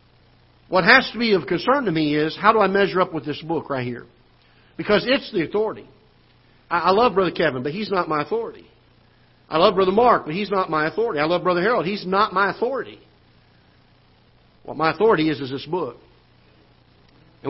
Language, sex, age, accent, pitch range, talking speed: English, male, 50-69, American, 155-215 Hz, 195 wpm